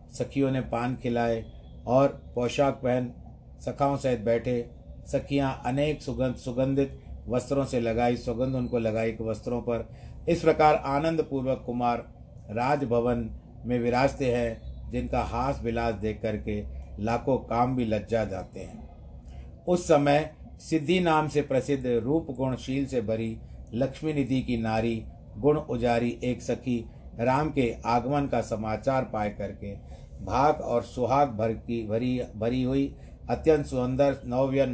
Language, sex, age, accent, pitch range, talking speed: Hindi, male, 50-69, native, 115-135 Hz, 135 wpm